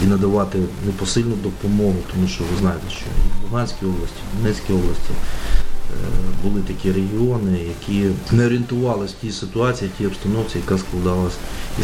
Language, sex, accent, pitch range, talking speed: Ukrainian, male, native, 95-110 Hz, 155 wpm